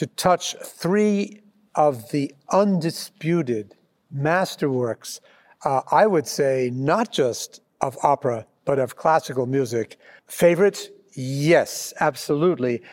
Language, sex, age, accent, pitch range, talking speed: English, male, 60-79, American, 140-170 Hz, 100 wpm